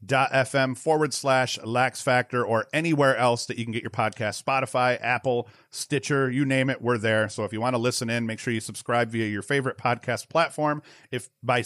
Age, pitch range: 40-59, 115-135 Hz